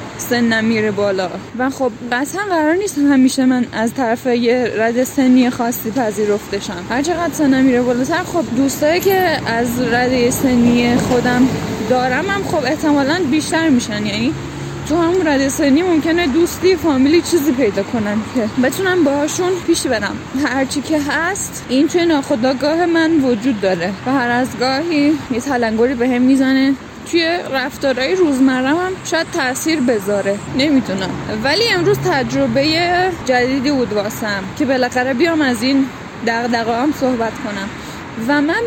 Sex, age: female, 10-29